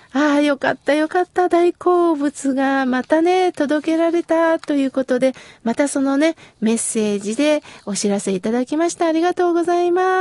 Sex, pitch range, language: female, 240-335 Hz, Japanese